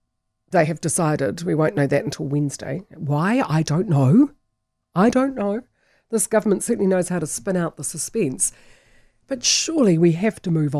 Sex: female